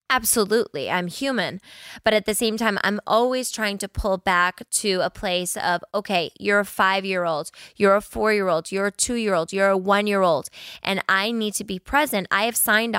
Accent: American